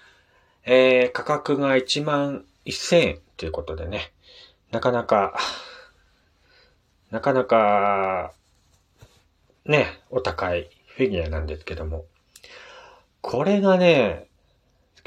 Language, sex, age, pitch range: Japanese, male, 40-59, 80-125 Hz